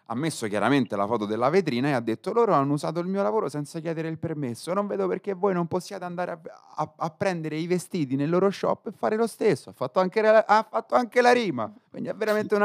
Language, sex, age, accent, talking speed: Italian, male, 30-49, native, 230 wpm